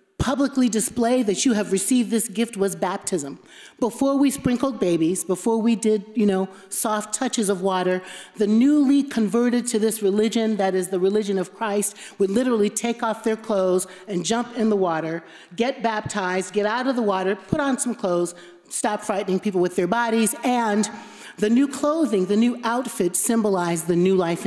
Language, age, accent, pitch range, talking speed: English, 40-59, American, 195-265 Hz, 180 wpm